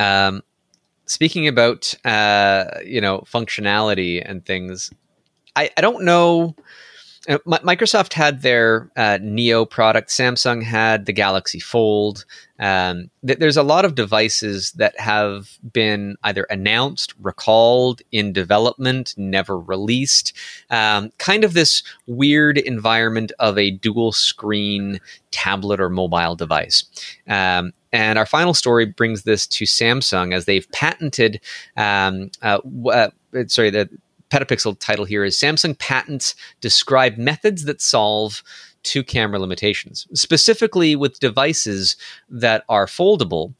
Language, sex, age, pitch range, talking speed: English, male, 30-49, 100-140 Hz, 125 wpm